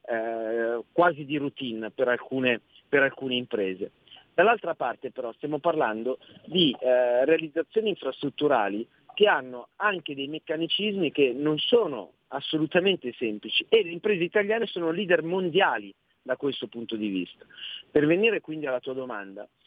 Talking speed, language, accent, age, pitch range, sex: 135 wpm, Italian, native, 40-59, 125-175 Hz, male